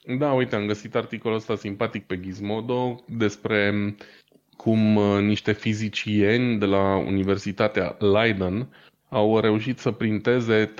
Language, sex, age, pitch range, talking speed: Romanian, male, 20-39, 95-110 Hz, 115 wpm